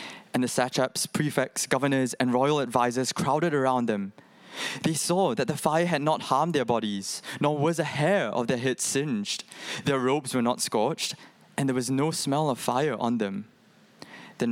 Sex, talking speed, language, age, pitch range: male, 180 wpm, English, 20-39, 120-160 Hz